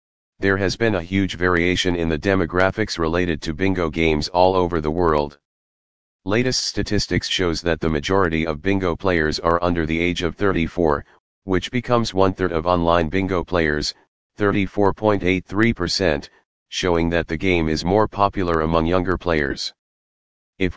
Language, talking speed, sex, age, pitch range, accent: English, 145 wpm, male, 40-59, 85-95 Hz, American